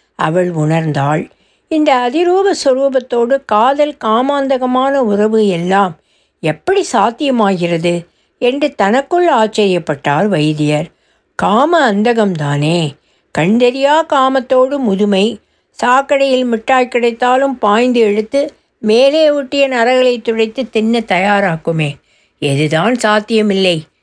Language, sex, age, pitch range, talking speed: Tamil, female, 60-79, 185-265 Hz, 80 wpm